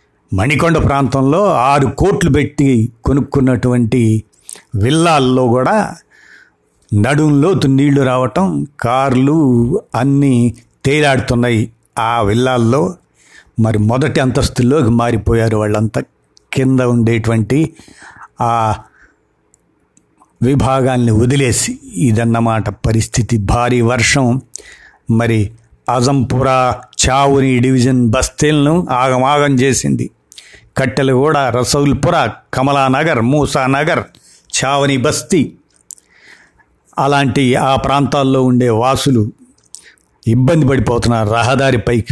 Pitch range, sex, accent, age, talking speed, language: 115-140 Hz, male, native, 50-69, 70 wpm, Telugu